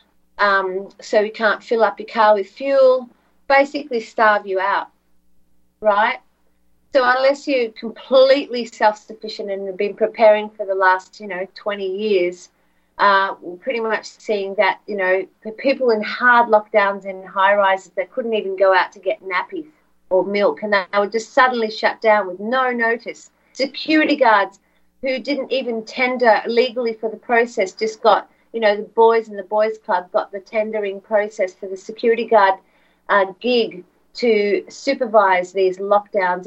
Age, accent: 40-59, Australian